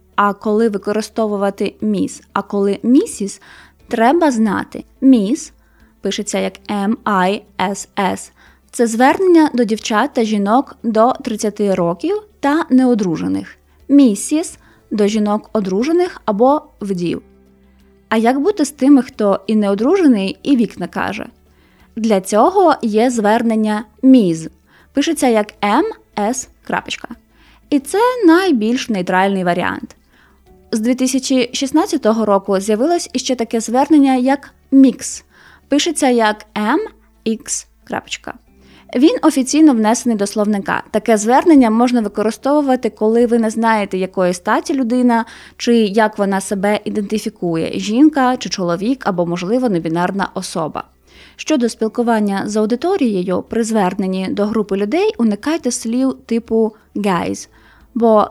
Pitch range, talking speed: 205-265 Hz, 115 wpm